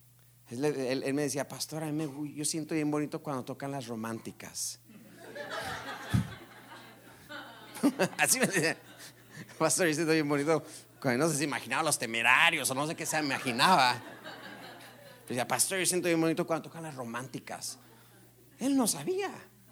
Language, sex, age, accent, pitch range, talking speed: Spanish, male, 40-59, Mexican, 120-165 Hz, 145 wpm